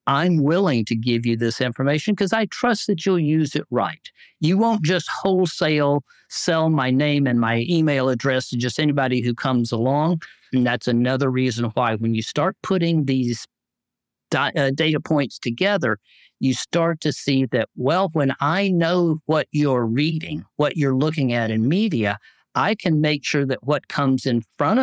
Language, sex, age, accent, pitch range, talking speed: English, male, 50-69, American, 120-165 Hz, 175 wpm